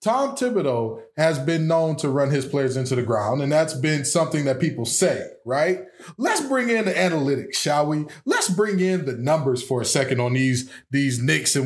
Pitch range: 140-210 Hz